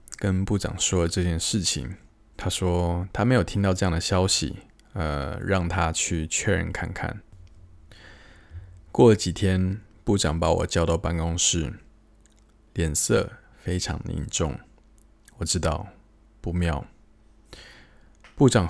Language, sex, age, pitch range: Chinese, male, 20-39, 85-105 Hz